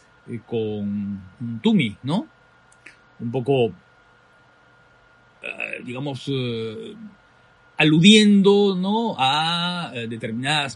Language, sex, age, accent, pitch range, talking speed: Spanish, male, 40-59, Mexican, 120-165 Hz, 60 wpm